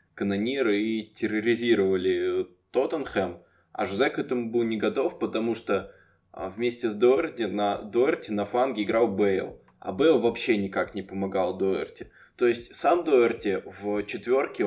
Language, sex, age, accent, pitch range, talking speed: Russian, male, 20-39, native, 100-115 Hz, 140 wpm